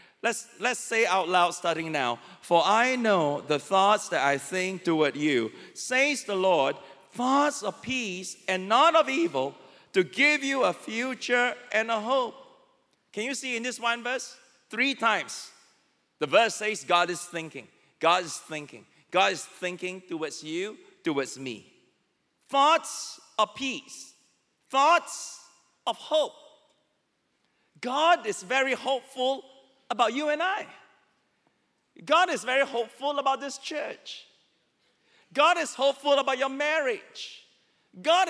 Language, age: English, 40-59